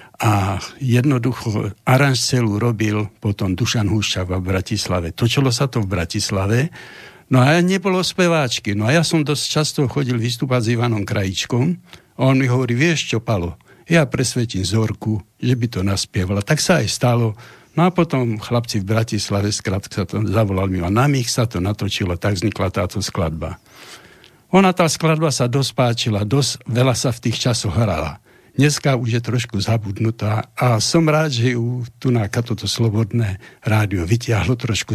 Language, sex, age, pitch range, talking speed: Slovak, male, 60-79, 105-135 Hz, 165 wpm